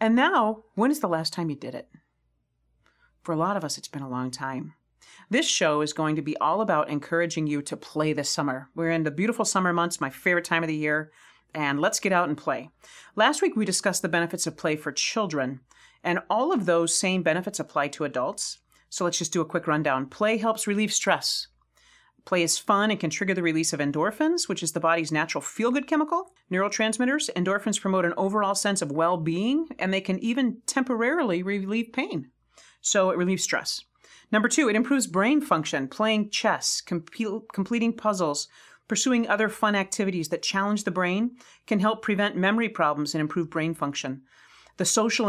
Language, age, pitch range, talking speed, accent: English, 40-59, 155-215 Hz, 195 wpm, American